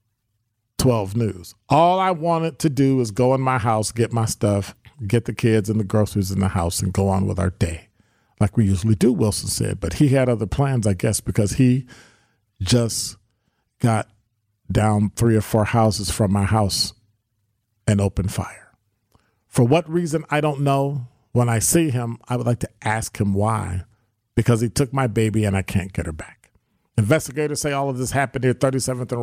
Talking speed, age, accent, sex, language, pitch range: 195 wpm, 40-59, American, male, English, 105-125 Hz